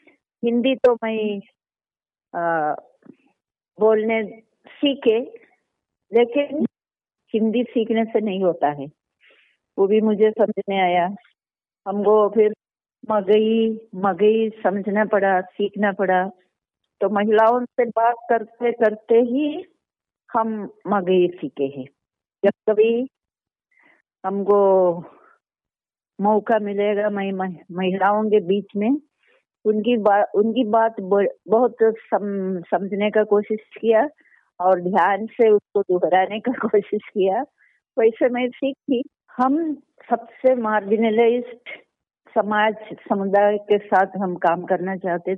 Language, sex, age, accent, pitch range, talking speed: Hindi, female, 50-69, native, 195-235 Hz, 100 wpm